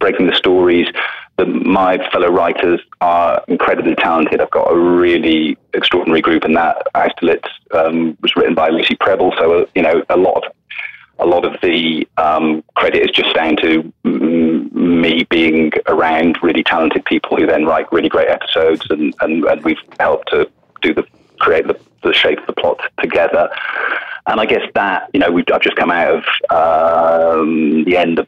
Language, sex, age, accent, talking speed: English, male, 30-49, British, 180 wpm